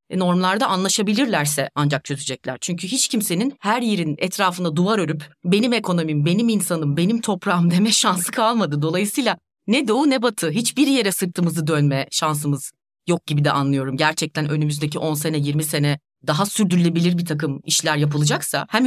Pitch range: 165-225 Hz